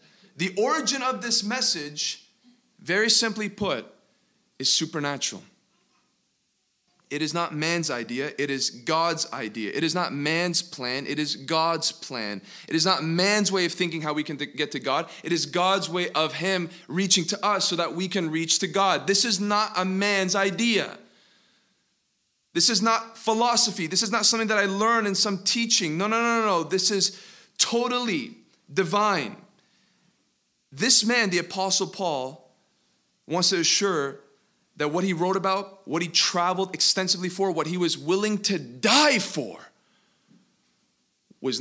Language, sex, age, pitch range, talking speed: English, male, 20-39, 160-210 Hz, 165 wpm